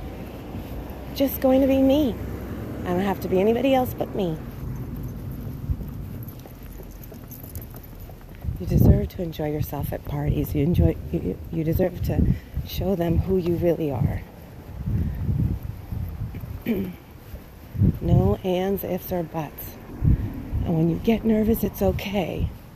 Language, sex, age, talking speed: English, female, 40-59, 120 wpm